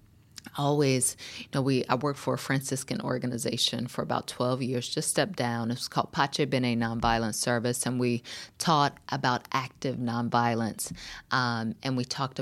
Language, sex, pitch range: English, female, 125-145 Hz